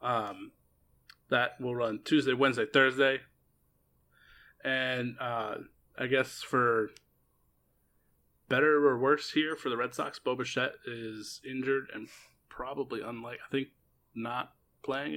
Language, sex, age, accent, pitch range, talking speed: English, male, 20-39, American, 115-135 Hz, 120 wpm